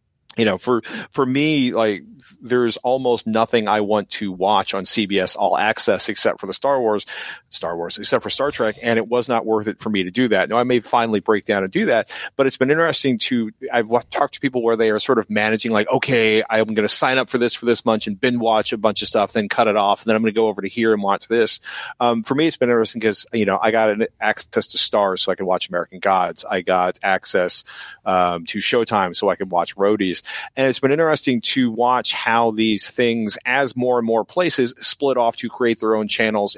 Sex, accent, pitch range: male, American, 100-120 Hz